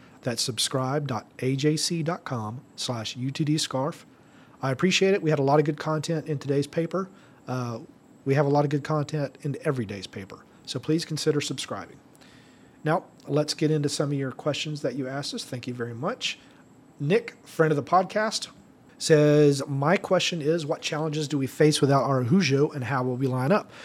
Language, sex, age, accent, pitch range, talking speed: English, male, 40-59, American, 140-155 Hz, 180 wpm